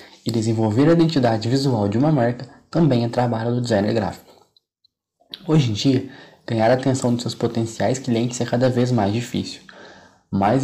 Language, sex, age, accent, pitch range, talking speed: Portuguese, male, 20-39, Brazilian, 110-135 Hz, 170 wpm